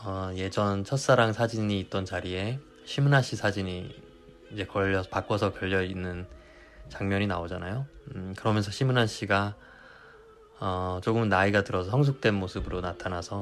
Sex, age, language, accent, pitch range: male, 20-39, Korean, native, 95-120 Hz